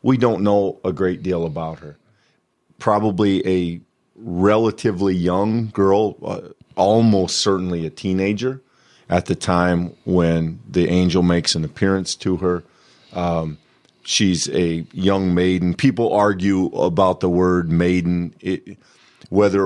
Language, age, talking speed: English, 40-59, 120 wpm